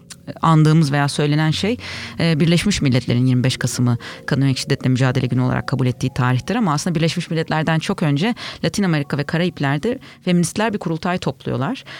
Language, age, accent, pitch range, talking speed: Turkish, 30-49, native, 135-170 Hz, 155 wpm